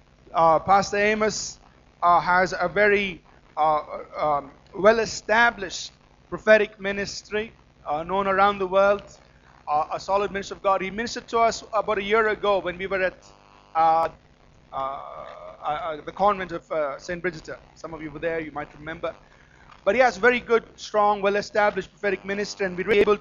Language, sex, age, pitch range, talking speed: English, male, 30-49, 180-210 Hz, 170 wpm